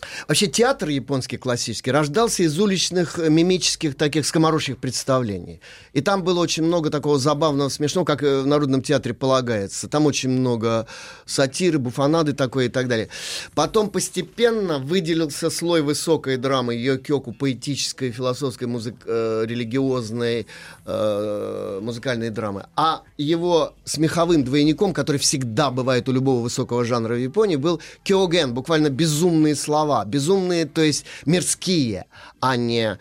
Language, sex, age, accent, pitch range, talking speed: Russian, male, 30-49, native, 125-165 Hz, 130 wpm